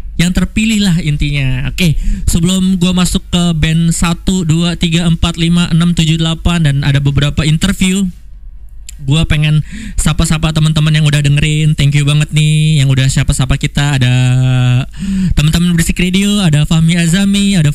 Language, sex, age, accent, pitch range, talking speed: Indonesian, male, 20-39, native, 145-175 Hz, 155 wpm